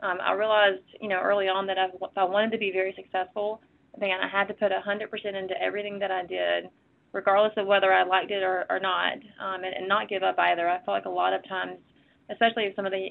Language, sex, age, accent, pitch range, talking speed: English, female, 30-49, American, 185-200 Hz, 245 wpm